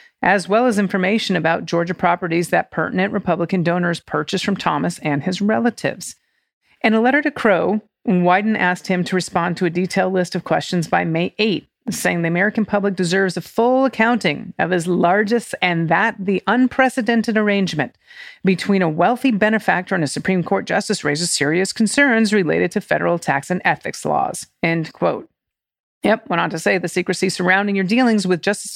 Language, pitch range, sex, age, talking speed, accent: English, 175-225 Hz, female, 40-59, 175 wpm, American